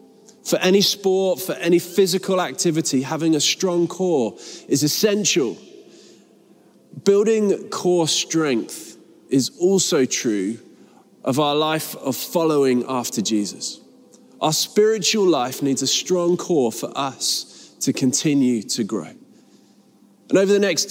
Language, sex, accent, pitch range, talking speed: English, male, British, 135-185 Hz, 125 wpm